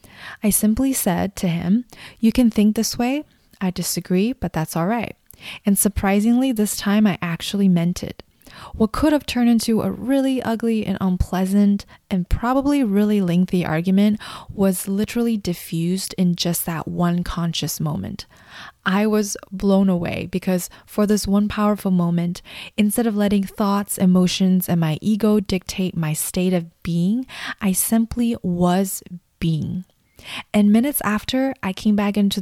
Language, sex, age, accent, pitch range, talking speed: English, female, 20-39, American, 175-215 Hz, 150 wpm